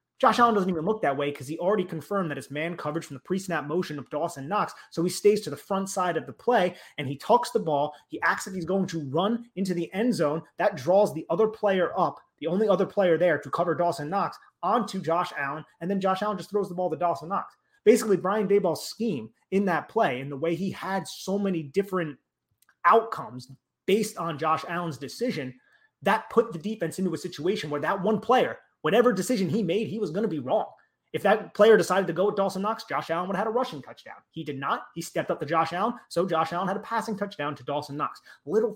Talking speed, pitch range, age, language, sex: 240 wpm, 145-200 Hz, 30-49, English, male